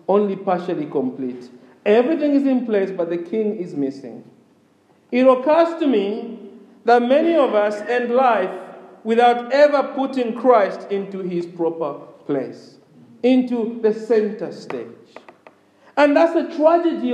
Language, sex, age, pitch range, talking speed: English, male, 50-69, 180-275 Hz, 135 wpm